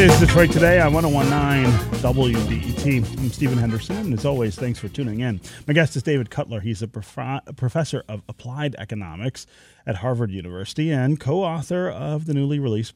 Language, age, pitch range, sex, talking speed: English, 30-49, 105-135 Hz, male, 175 wpm